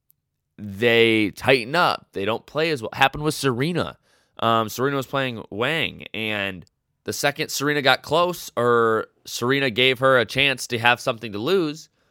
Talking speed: 165 wpm